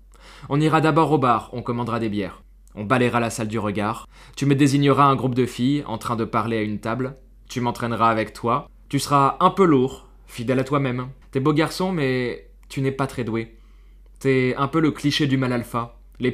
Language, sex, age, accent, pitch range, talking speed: French, male, 20-39, French, 115-140 Hz, 215 wpm